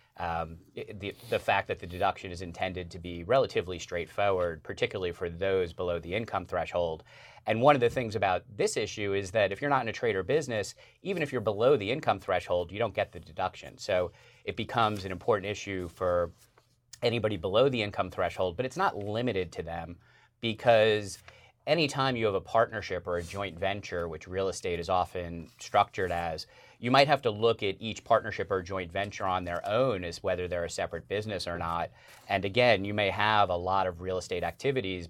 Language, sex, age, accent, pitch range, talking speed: English, male, 30-49, American, 90-115 Hz, 200 wpm